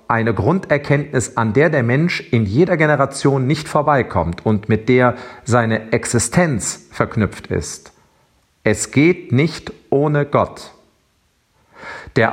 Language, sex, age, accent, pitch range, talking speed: German, male, 40-59, German, 115-160 Hz, 115 wpm